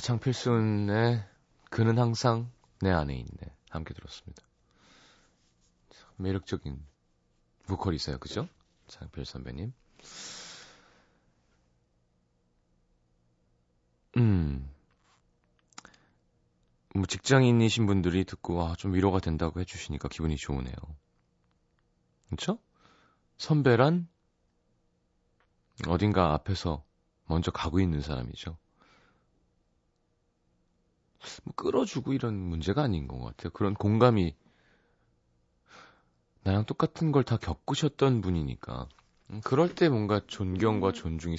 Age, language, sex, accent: 30-49, Korean, male, native